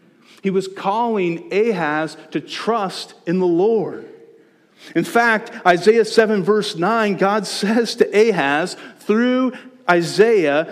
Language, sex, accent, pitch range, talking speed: English, male, American, 175-235 Hz, 120 wpm